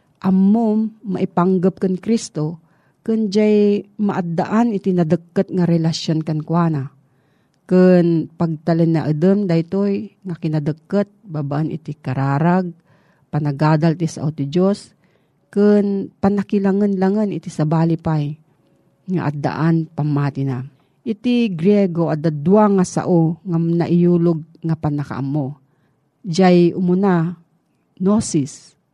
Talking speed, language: 95 wpm, Filipino